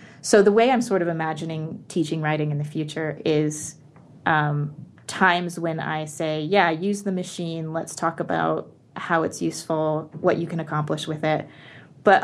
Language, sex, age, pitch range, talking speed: English, female, 20-39, 155-180 Hz, 170 wpm